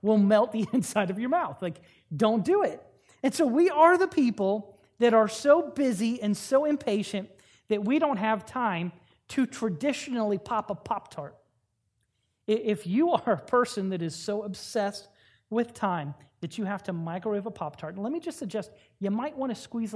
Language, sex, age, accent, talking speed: English, male, 30-49, American, 185 wpm